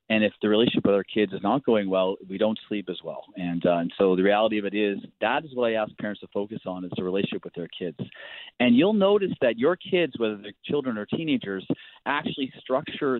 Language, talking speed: English, 240 wpm